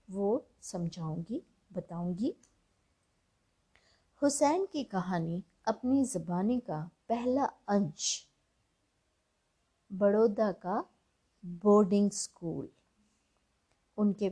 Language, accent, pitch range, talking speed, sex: Hindi, native, 180-240 Hz, 65 wpm, female